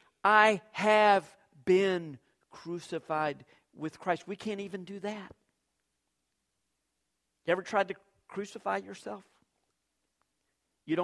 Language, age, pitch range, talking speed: English, 50-69, 145-205 Hz, 100 wpm